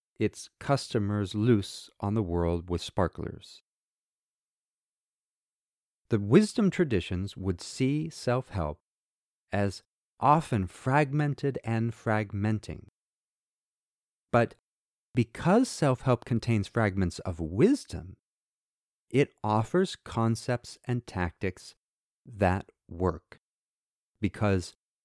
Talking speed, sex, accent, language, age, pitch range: 80 wpm, male, American, English, 40-59, 95-130 Hz